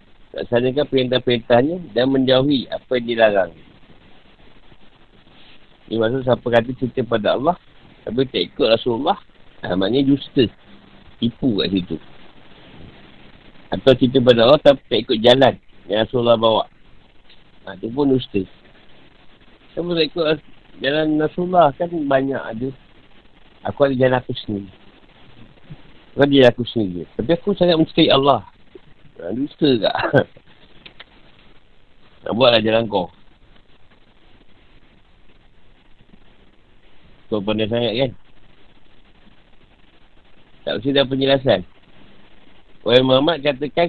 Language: Malay